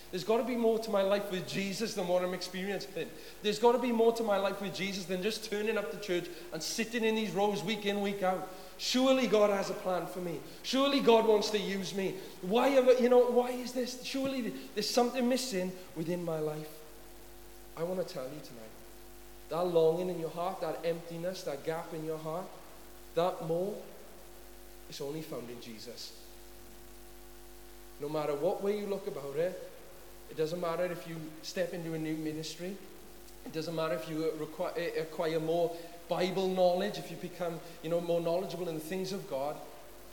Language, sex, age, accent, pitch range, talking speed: English, male, 40-59, British, 160-210 Hz, 195 wpm